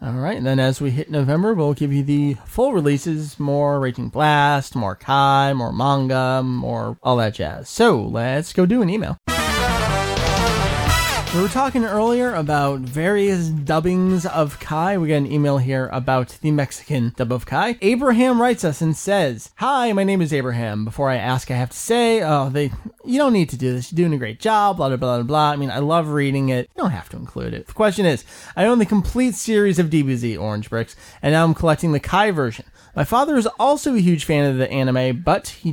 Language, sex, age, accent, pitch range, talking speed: English, male, 30-49, American, 125-175 Hz, 215 wpm